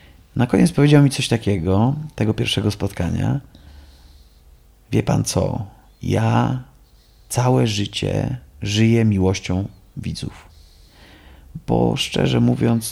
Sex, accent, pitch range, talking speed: male, native, 95-130 Hz, 100 wpm